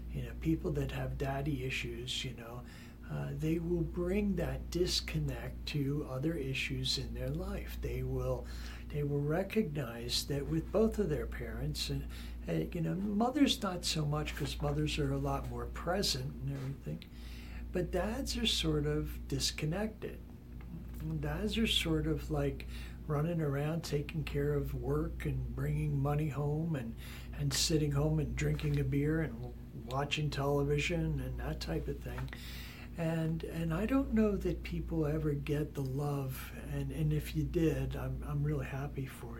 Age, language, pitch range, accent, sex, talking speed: 60-79, English, 130-160 Hz, American, male, 165 wpm